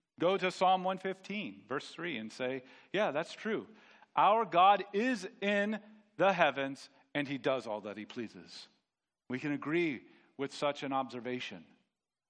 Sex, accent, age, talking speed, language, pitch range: male, American, 40-59, 150 wpm, English, 130-170 Hz